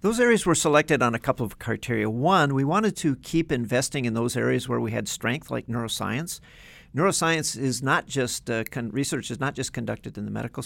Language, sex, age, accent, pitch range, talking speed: English, male, 50-69, American, 115-150 Hz, 210 wpm